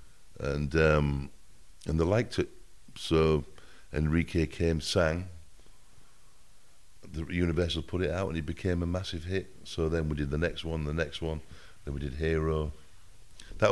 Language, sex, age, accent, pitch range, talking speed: English, male, 50-69, British, 75-90 Hz, 160 wpm